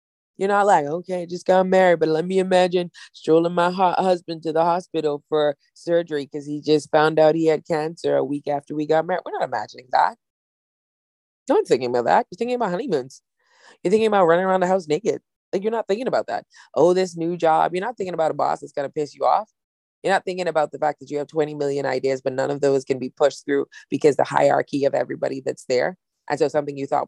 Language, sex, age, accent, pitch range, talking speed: English, female, 20-39, American, 140-180 Hz, 240 wpm